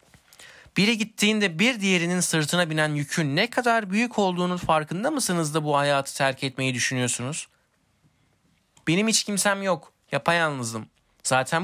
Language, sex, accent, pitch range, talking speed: Turkish, male, native, 125-160 Hz, 135 wpm